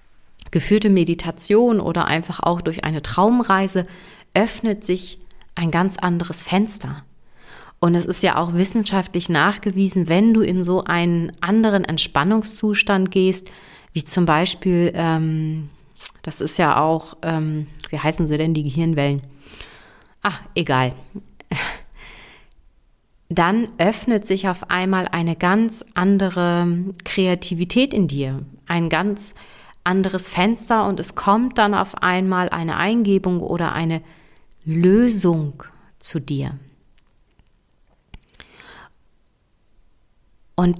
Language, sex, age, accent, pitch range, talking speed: German, female, 30-49, German, 165-200 Hz, 105 wpm